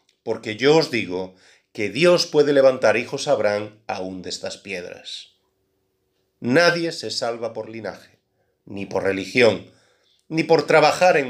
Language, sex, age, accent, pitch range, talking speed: Spanish, male, 40-59, Spanish, 105-145 Hz, 145 wpm